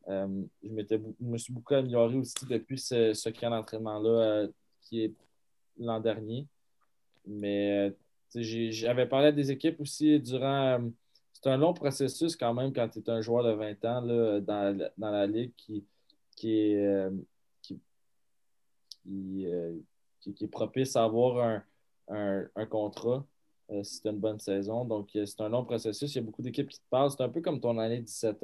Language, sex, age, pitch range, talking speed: French, male, 20-39, 105-120 Hz, 190 wpm